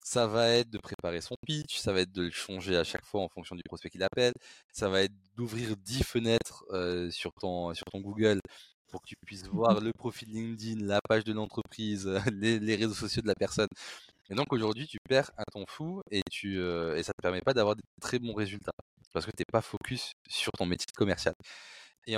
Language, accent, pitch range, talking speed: French, French, 95-120 Hz, 230 wpm